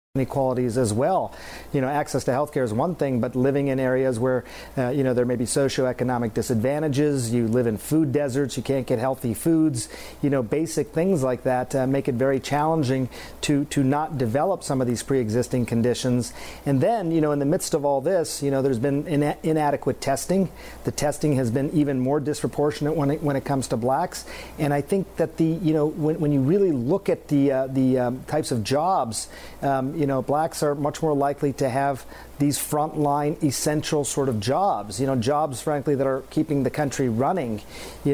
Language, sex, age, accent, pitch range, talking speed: English, male, 40-59, American, 130-150 Hz, 210 wpm